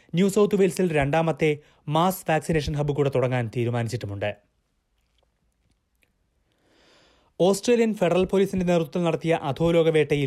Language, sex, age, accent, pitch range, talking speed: Malayalam, male, 30-49, native, 135-175 Hz, 95 wpm